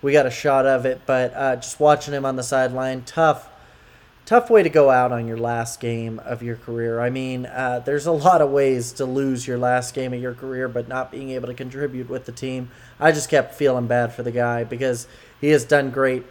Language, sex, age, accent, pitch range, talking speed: English, male, 20-39, American, 125-160 Hz, 240 wpm